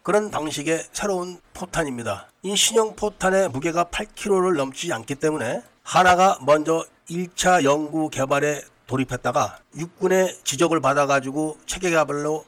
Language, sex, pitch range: Korean, male, 140-185 Hz